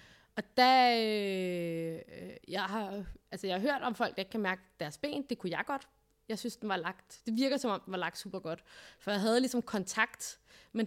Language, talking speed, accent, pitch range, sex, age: Danish, 225 wpm, native, 190-245 Hz, female, 20-39